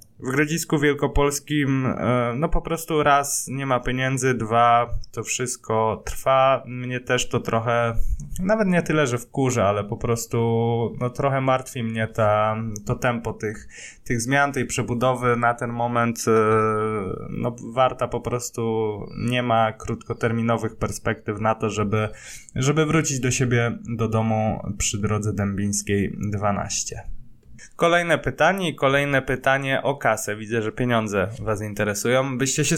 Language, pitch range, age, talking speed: Polish, 115-140 Hz, 20-39, 140 wpm